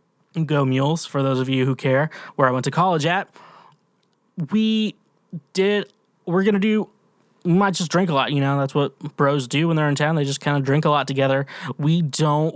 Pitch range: 140-165 Hz